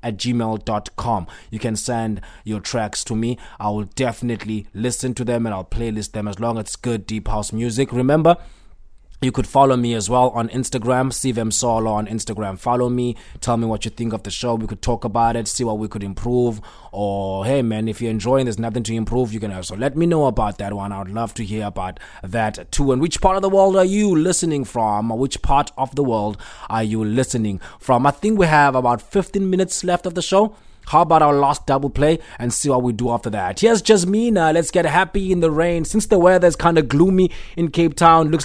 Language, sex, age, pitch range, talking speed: English, male, 20-39, 110-150 Hz, 240 wpm